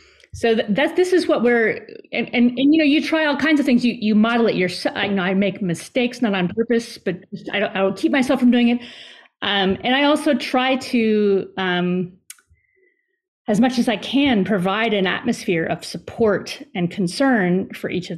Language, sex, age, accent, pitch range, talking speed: English, female, 30-49, American, 195-265 Hz, 210 wpm